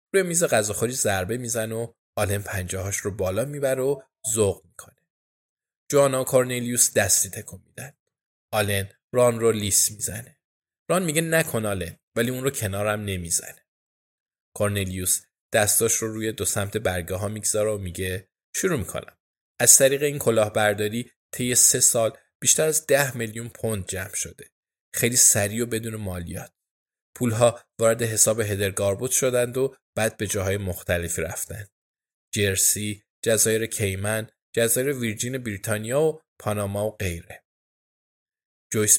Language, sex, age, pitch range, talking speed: Persian, male, 20-39, 100-130 Hz, 135 wpm